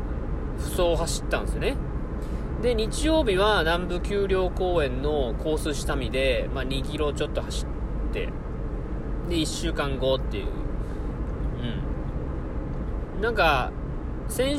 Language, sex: Japanese, male